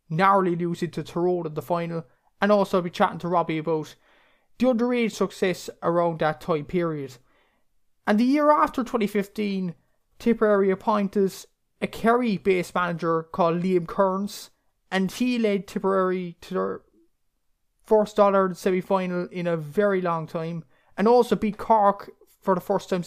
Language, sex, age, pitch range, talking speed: English, male, 20-39, 170-200 Hz, 155 wpm